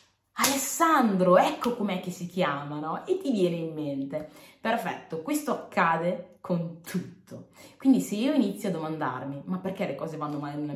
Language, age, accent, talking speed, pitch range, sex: Italian, 20-39, native, 160 wpm, 150-200 Hz, female